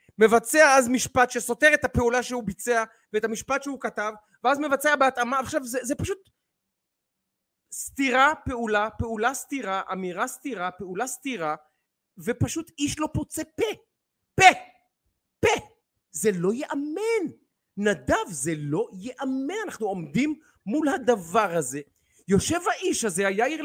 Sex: male